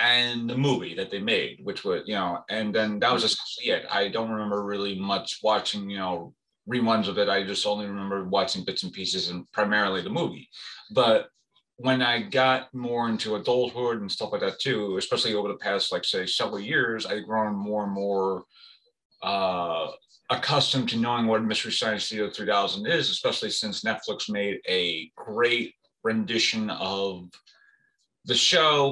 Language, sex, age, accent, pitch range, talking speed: English, male, 30-49, American, 105-130 Hz, 175 wpm